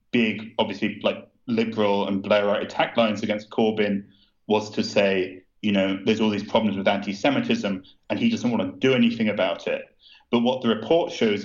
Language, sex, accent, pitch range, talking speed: English, male, British, 105-120 Hz, 185 wpm